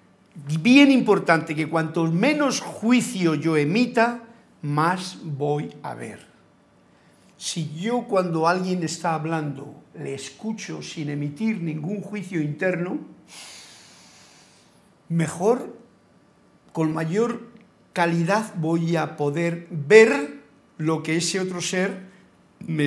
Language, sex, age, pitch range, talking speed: Spanish, male, 50-69, 150-195 Hz, 100 wpm